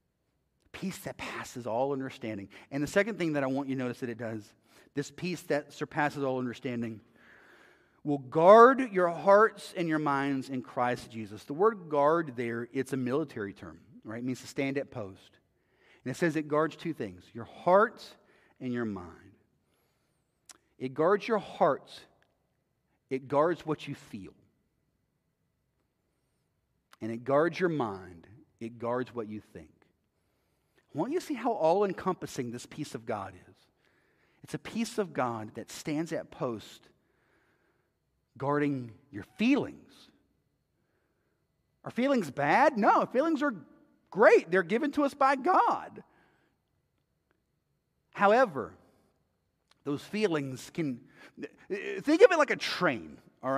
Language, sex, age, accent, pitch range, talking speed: English, male, 40-59, American, 120-195 Hz, 140 wpm